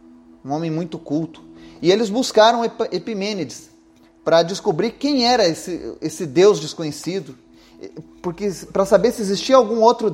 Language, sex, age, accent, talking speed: Portuguese, male, 30-49, Brazilian, 130 wpm